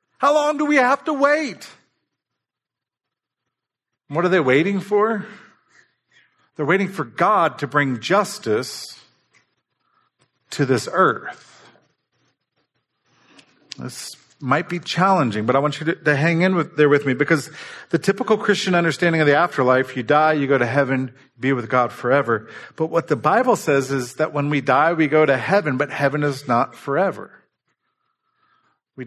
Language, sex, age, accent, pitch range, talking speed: English, male, 50-69, American, 120-160 Hz, 155 wpm